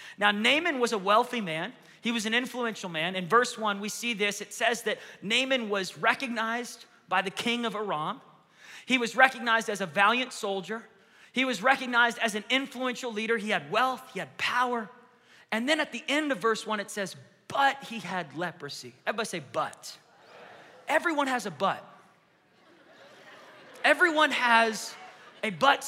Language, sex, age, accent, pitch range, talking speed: English, male, 30-49, American, 205-260 Hz, 170 wpm